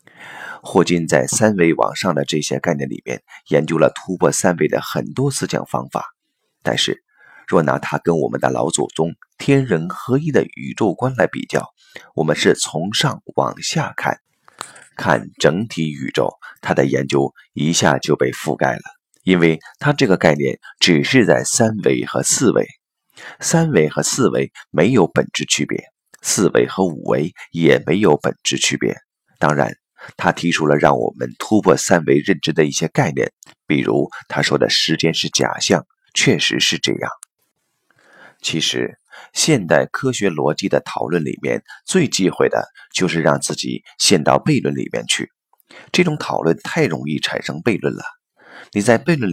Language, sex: Chinese, male